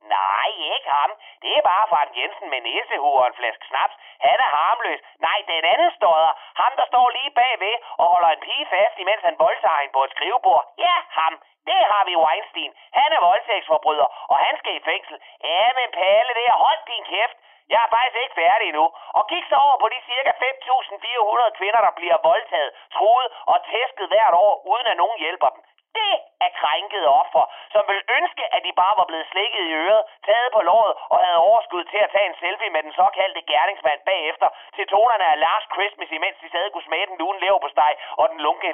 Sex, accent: male, native